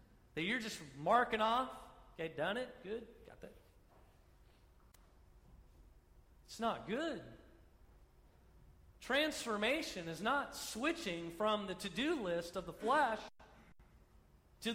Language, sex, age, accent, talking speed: English, male, 40-59, American, 105 wpm